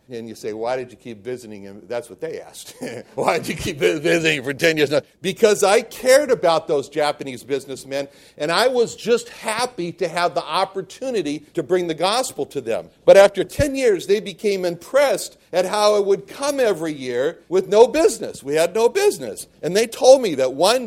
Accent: American